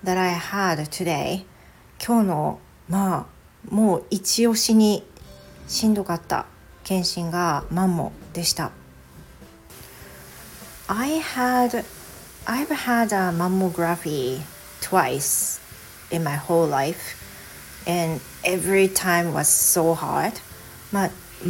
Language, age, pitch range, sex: Japanese, 40-59, 165-200 Hz, female